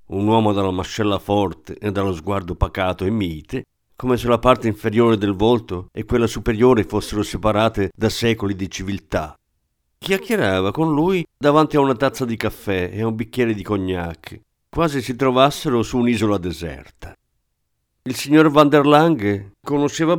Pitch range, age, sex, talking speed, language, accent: 95-130 Hz, 50-69, male, 160 wpm, Italian, native